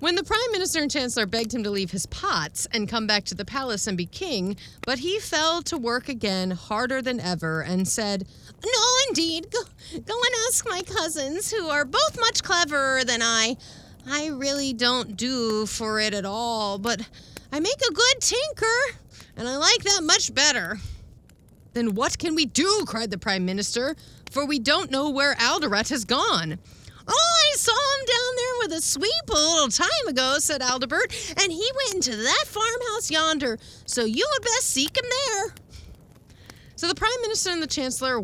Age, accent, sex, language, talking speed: 40-59, American, female, English, 185 wpm